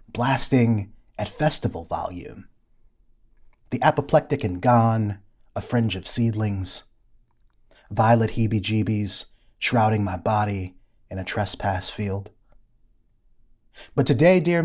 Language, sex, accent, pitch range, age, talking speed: English, male, American, 105-125 Hz, 30-49, 100 wpm